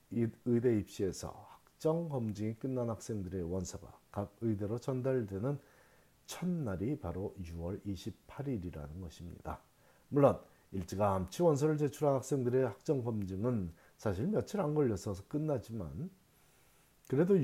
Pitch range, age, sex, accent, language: 95-135 Hz, 40-59, male, native, Korean